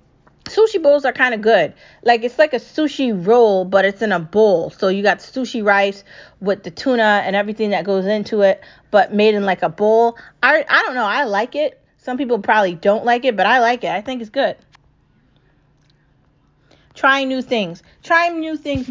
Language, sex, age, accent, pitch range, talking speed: English, female, 30-49, American, 180-225 Hz, 205 wpm